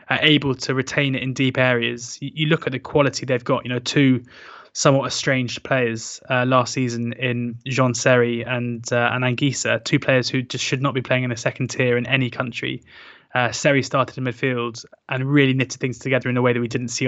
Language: English